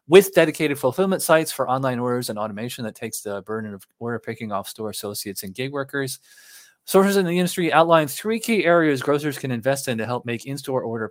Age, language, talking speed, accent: 20-39, English, 210 wpm, American